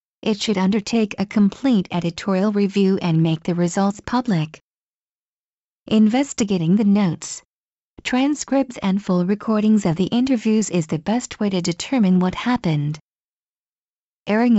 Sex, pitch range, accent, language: female, 180-235 Hz, American, English